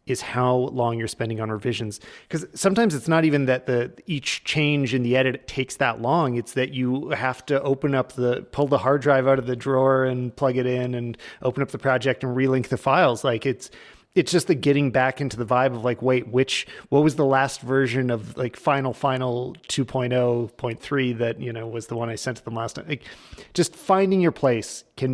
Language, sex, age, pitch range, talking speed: English, male, 30-49, 120-140 Hz, 220 wpm